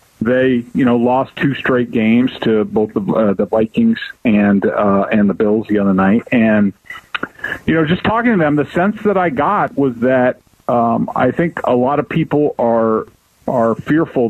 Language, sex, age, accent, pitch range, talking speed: English, male, 40-59, American, 115-145 Hz, 190 wpm